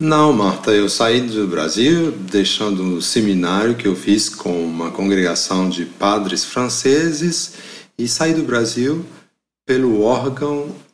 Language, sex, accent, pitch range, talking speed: Portuguese, male, Brazilian, 95-125 Hz, 135 wpm